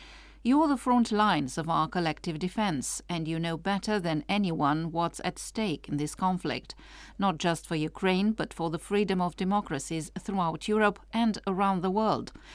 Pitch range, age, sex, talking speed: 165-220 Hz, 50-69, female, 170 wpm